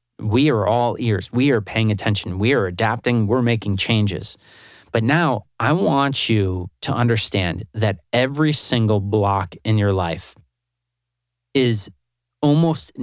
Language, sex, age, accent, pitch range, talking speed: English, male, 30-49, American, 100-120 Hz, 140 wpm